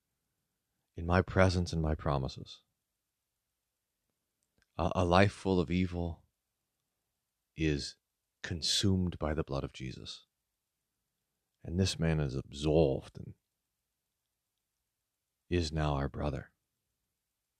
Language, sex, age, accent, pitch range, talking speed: English, male, 40-59, American, 75-95 Hz, 100 wpm